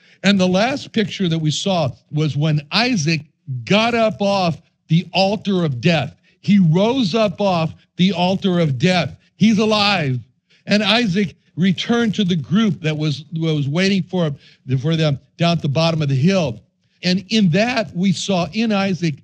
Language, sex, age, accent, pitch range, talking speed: English, male, 60-79, American, 150-195 Hz, 170 wpm